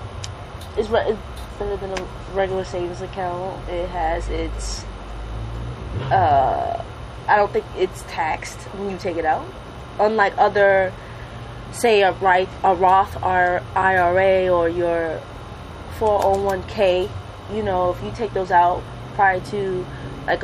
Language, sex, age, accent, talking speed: English, female, 20-39, American, 125 wpm